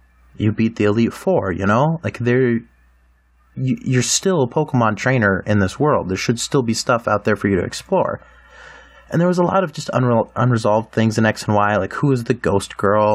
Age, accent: 30-49, American